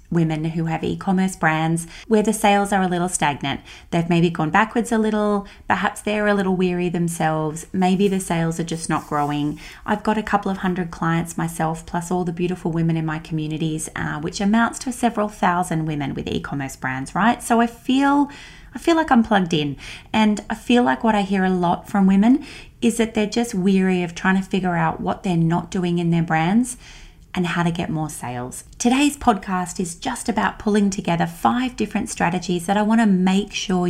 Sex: female